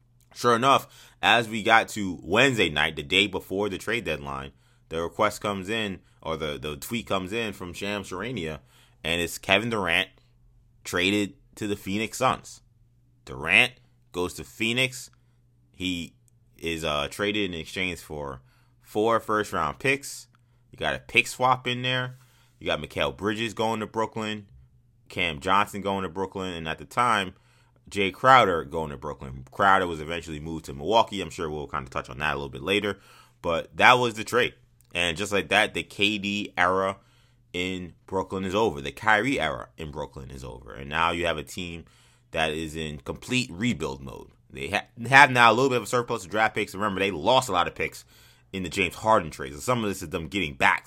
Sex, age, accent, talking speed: male, 20-39, American, 190 wpm